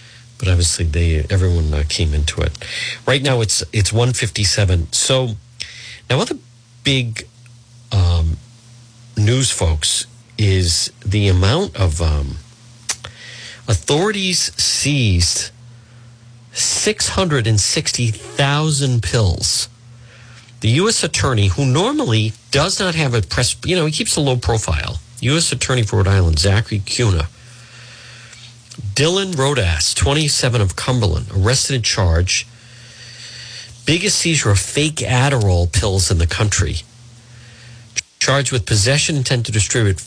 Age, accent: 50-69, American